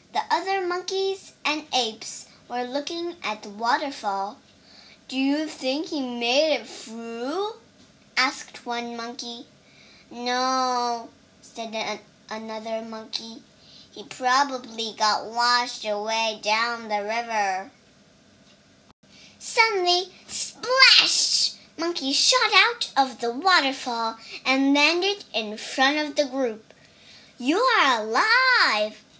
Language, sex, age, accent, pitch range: Chinese, male, 10-29, American, 230-345 Hz